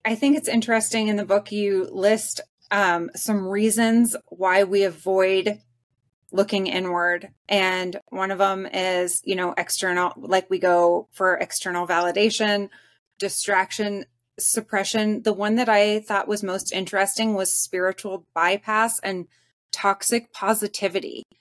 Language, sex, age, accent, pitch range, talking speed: English, female, 20-39, American, 180-220 Hz, 130 wpm